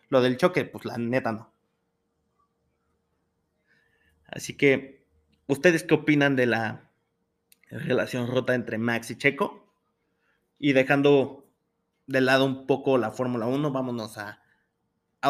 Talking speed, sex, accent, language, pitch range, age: 125 wpm, male, Mexican, Spanish, 120-155 Hz, 30-49